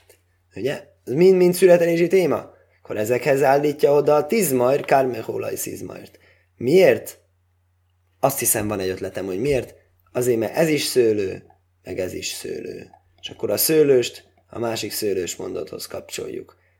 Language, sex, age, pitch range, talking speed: Hungarian, male, 20-39, 95-150 Hz, 145 wpm